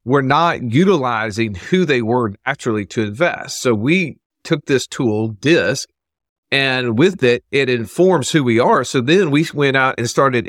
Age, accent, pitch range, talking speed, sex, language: 40-59, American, 110-140 Hz, 170 wpm, male, English